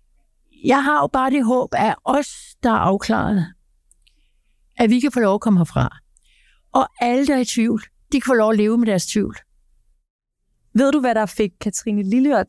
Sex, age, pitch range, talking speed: female, 60-79, 220-285 Hz, 195 wpm